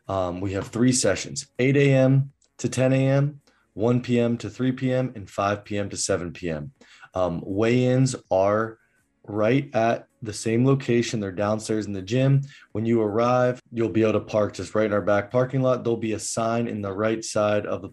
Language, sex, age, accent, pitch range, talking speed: English, male, 20-39, American, 100-120 Hz, 195 wpm